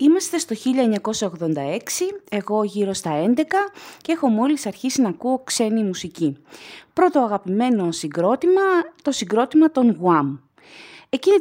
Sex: female